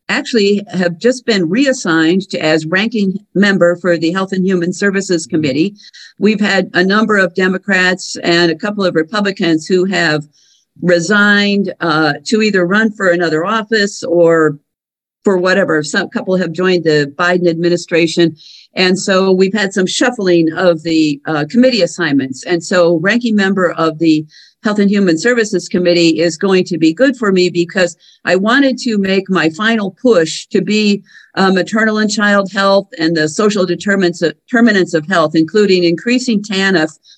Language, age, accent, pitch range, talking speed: English, 50-69, American, 170-205 Hz, 165 wpm